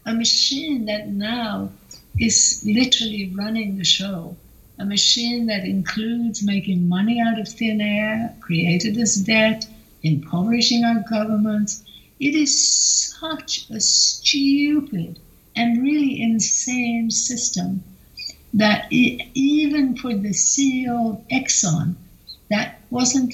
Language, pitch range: English, 190-240 Hz